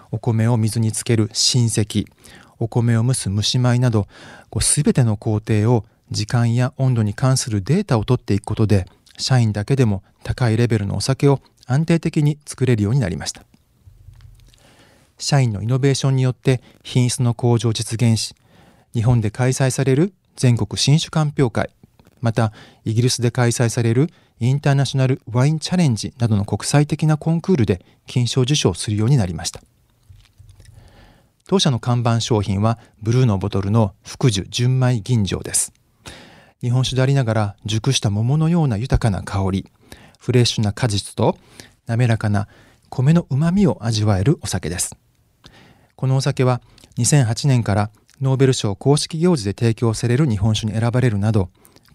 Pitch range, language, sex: 110-130 Hz, Japanese, male